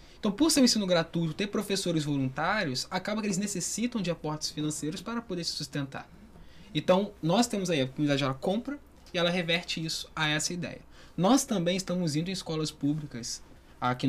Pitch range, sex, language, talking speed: 140-195 Hz, male, Portuguese, 185 wpm